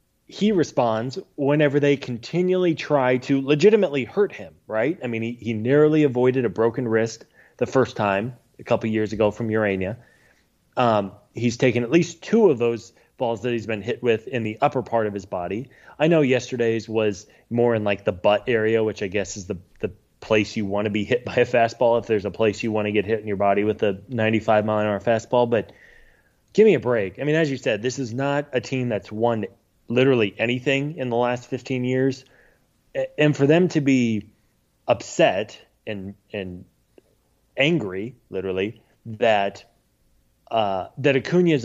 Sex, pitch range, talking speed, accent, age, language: male, 110-130 Hz, 185 wpm, American, 20-39, English